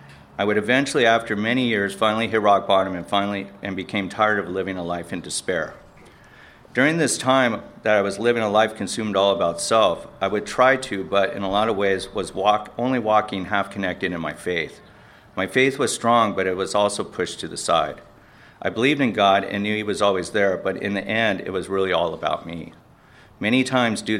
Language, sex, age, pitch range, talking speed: English, male, 40-59, 95-110 Hz, 215 wpm